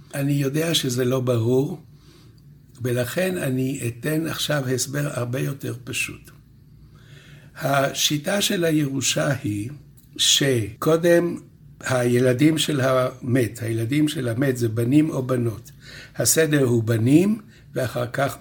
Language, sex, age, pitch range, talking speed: Hebrew, male, 60-79, 125-150 Hz, 110 wpm